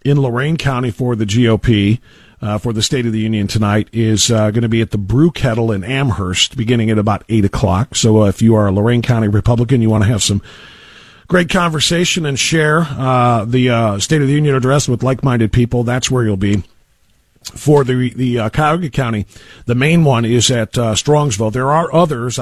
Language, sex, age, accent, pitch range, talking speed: English, male, 50-69, American, 110-135 Hz, 210 wpm